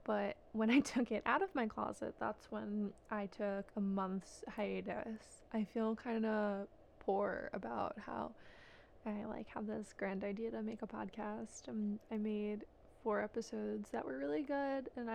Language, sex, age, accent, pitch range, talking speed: English, female, 20-39, American, 205-225 Hz, 165 wpm